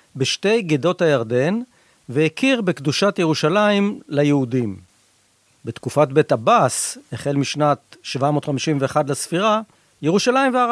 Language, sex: Hebrew, male